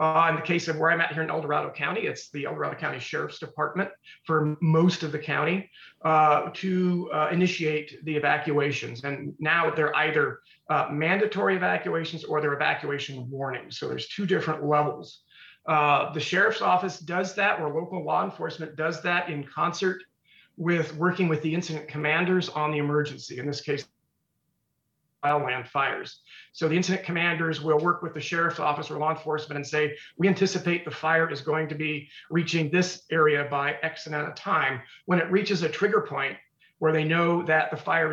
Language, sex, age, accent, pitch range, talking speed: English, male, 40-59, American, 150-170 Hz, 185 wpm